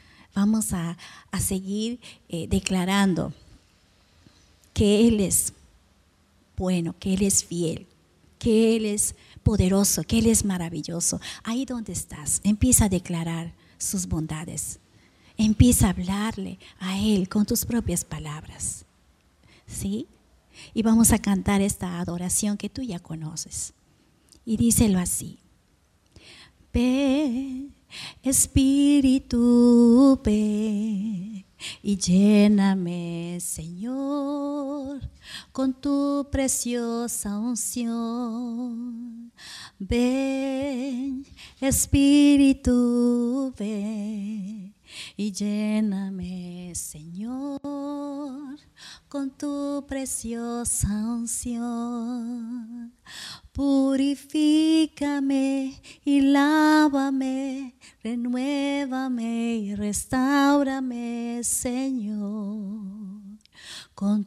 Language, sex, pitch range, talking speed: Spanish, female, 185-260 Hz, 75 wpm